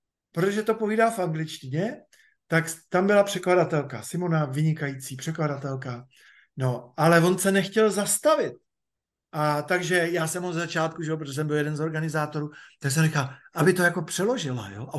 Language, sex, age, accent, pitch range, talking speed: Czech, male, 50-69, native, 150-210 Hz, 165 wpm